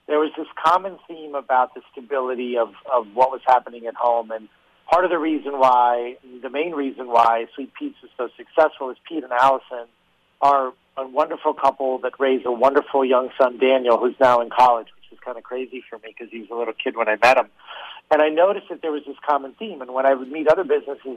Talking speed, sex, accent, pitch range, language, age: 230 wpm, male, American, 125-150 Hz, English, 50-69